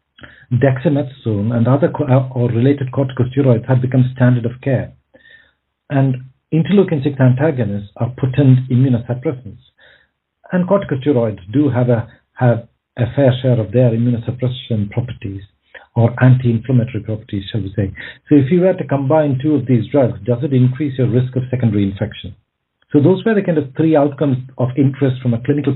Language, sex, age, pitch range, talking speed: English, male, 50-69, 120-145 Hz, 160 wpm